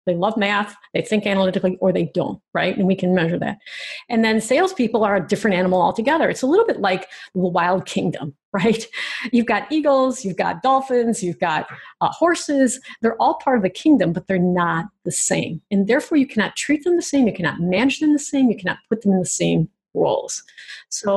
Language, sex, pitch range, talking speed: English, female, 185-245 Hz, 215 wpm